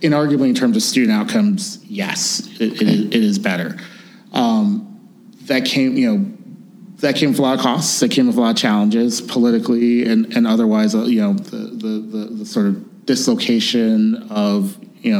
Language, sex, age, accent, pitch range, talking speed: English, male, 30-49, American, 205-225 Hz, 185 wpm